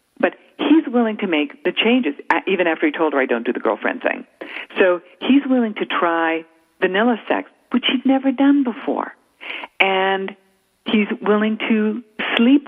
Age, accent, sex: 50-69, American, female